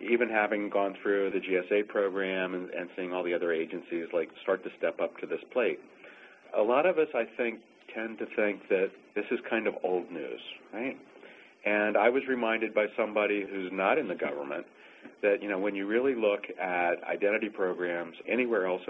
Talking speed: 195 wpm